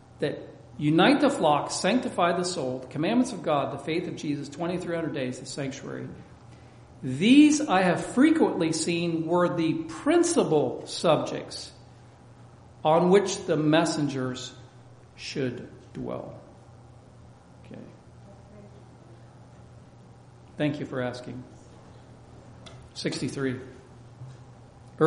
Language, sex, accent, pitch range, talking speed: English, male, American, 125-170 Hz, 95 wpm